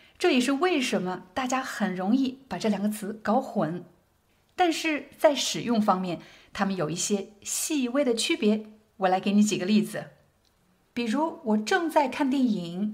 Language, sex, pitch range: Chinese, female, 200-270 Hz